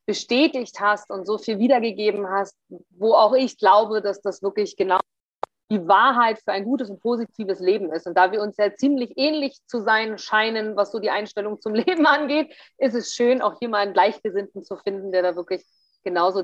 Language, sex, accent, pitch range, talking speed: German, female, German, 195-260 Hz, 200 wpm